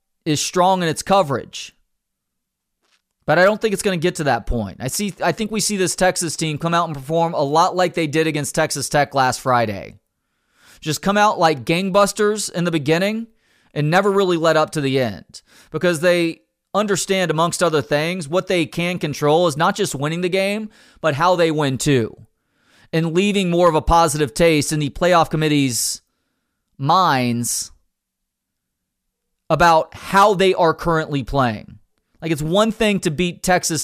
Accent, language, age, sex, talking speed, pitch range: American, English, 30-49, male, 180 wpm, 150-185 Hz